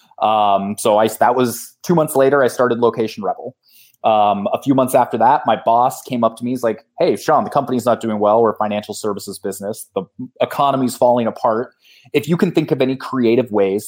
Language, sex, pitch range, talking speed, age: English, male, 115-145 Hz, 215 wpm, 20-39